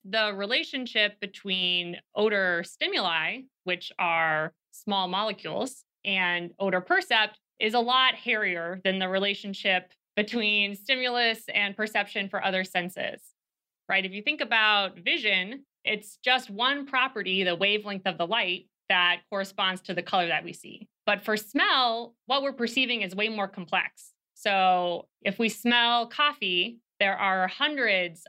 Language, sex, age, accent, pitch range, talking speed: English, female, 20-39, American, 185-220 Hz, 140 wpm